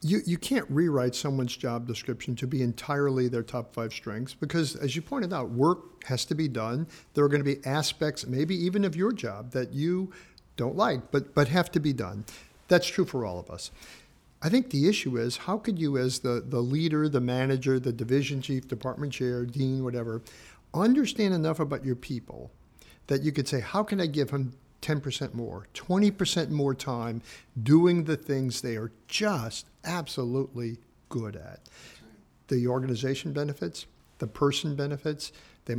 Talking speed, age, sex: 180 wpm, 50-69, male